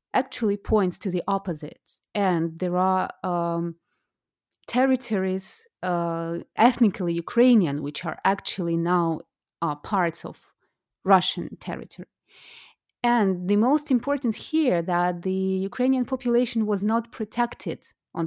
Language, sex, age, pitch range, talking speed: English, female, 30-49, 175-230 Hz, 115 wpm